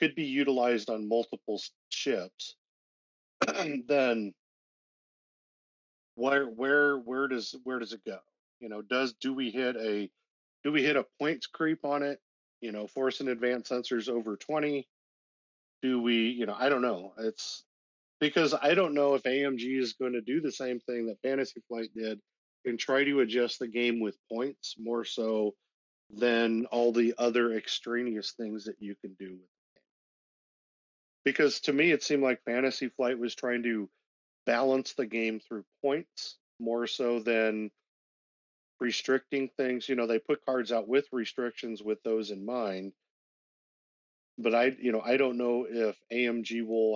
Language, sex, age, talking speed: English, male, 40-59, 160 wpm